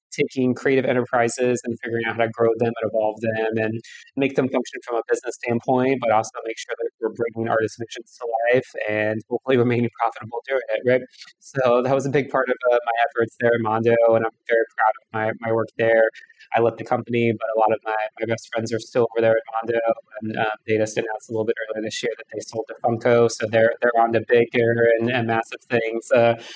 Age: 20-39